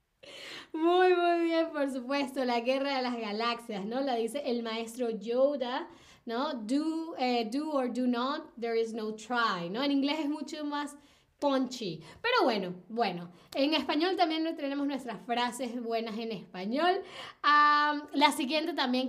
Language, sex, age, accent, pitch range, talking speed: Spanish, female, 10-29, American, 230-305 Hz, 155 wpm